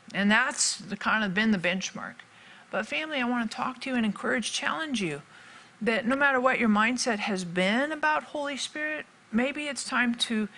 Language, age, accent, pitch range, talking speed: English, 50-69, American, 190-245 Hz, 200 wpm